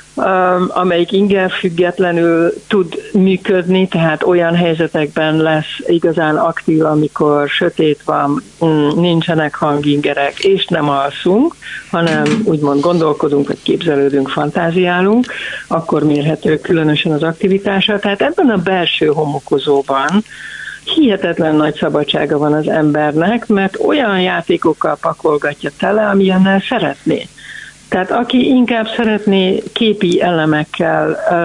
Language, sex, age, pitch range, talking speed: Hungarian, female, 50-69, 155-195 Hz, 105 wpm